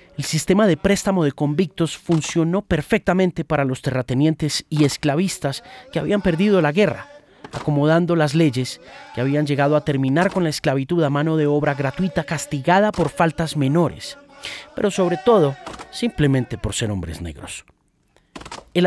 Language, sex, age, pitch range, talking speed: Spanish, male, 30-49, 140-190 Hz, 150 wpm